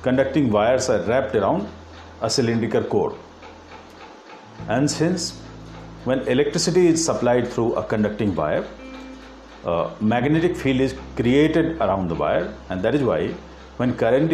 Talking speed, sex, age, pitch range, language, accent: 135 wpm, male, 50-69, 100-145 Hz, Hindi, native